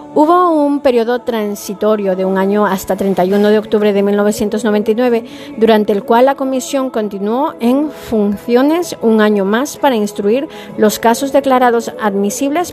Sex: female